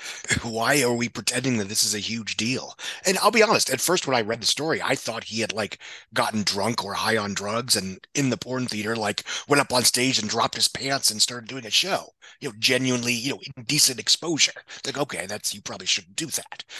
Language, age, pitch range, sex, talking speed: English, 30-49, 105-130 Hz, male, 235 wpm